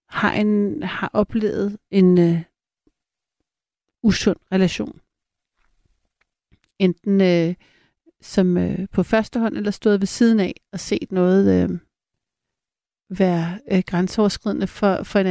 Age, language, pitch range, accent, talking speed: 60-79, Danish, 185-210 Hz, native, 120 wpm